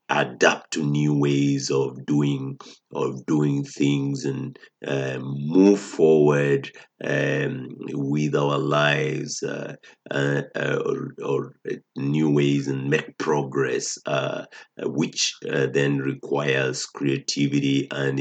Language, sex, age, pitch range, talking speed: English, male, 50-69, 70-80 Hz, 110 wpm